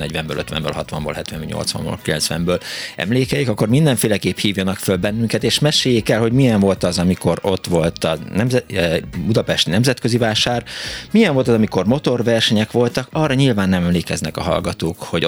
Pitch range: 90-120 Hz